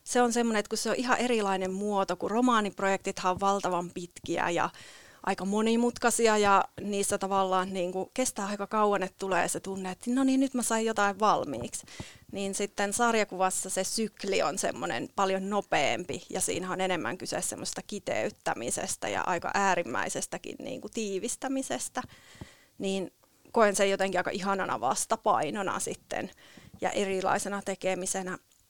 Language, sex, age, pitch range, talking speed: Finnish, female, 30-49, 190-220 Hz, 145 wpm